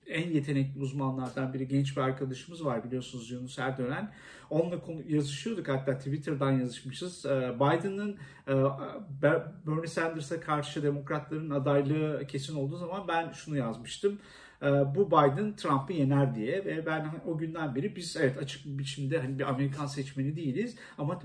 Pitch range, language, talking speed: 135-165 Hz, Turkish, 150 wpm